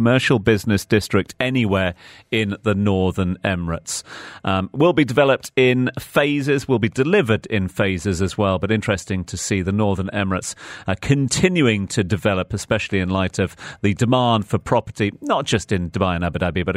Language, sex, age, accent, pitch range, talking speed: English, male, 40-59, British, 100-125 Hz, 170 wpm